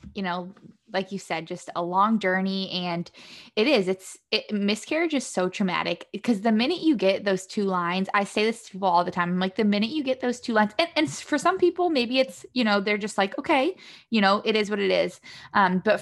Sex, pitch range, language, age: female, 185-225 Hz, English, 20-39